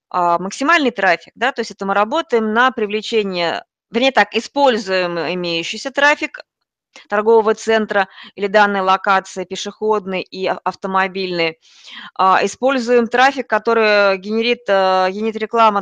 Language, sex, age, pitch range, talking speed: Russian, female, 20-39, 195-250 Hz, 110 wpm